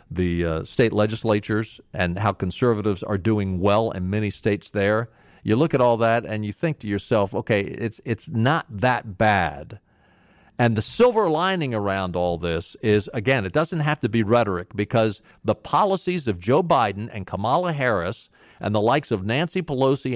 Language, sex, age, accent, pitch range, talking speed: English, male, 50-69, American, 100-145 Hz, 180 wpm